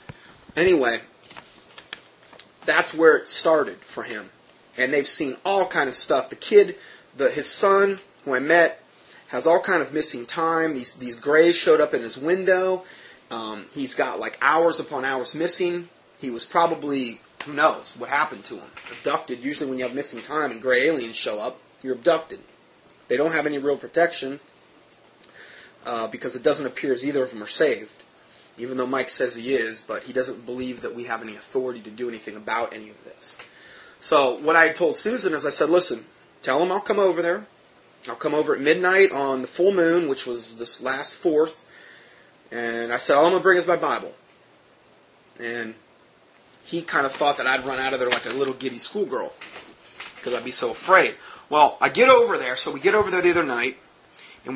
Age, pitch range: 30-49, 125-175 Hz